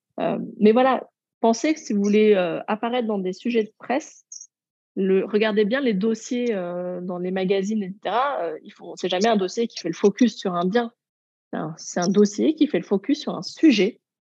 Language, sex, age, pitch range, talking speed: French, female, 30-49, 195-245 Hz, 215 wpm